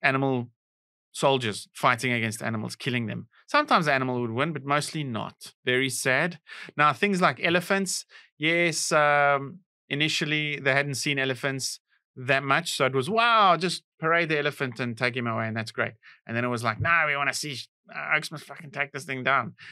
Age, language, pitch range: 30-49, English, 120-160 Hz